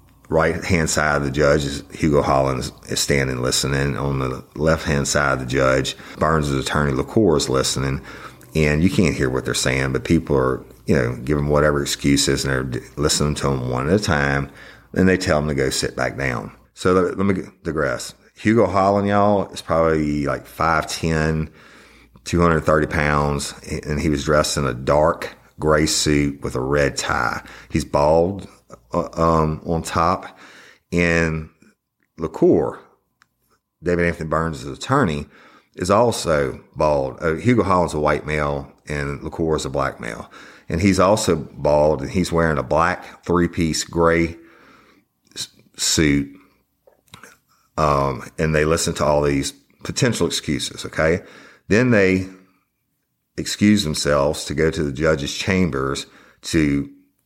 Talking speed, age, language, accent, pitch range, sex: 150 wpm, 40-59, English, American, 70-85 Hz, male